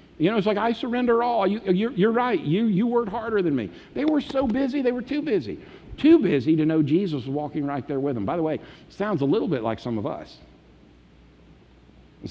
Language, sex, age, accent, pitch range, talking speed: English, male, 50-69, American, 110-165 Hz, 240 wpm